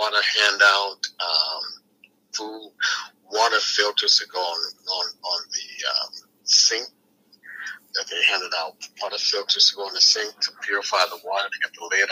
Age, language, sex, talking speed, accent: 50-69, English, male, 165 wpm, American